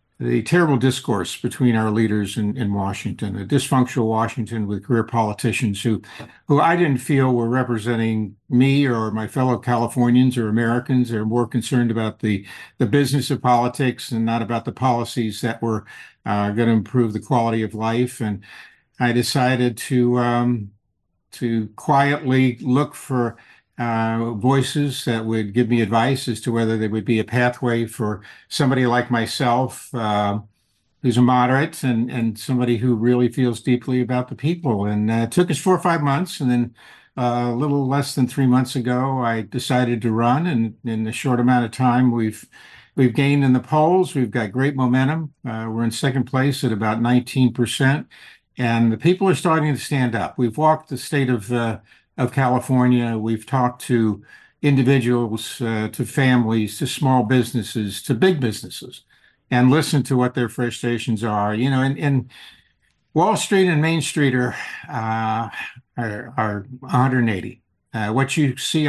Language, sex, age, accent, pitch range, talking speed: English, male, 50-69, American, 115-130 Hz, 175 wpm